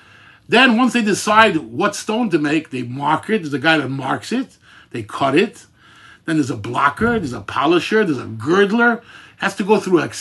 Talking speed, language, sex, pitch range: 220 wpm, English, male, 150-220 Hz